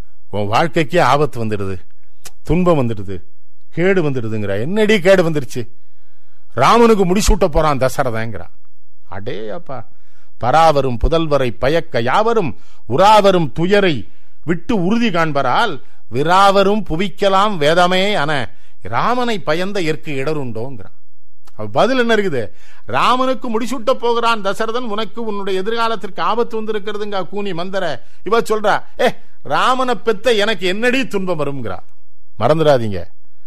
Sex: male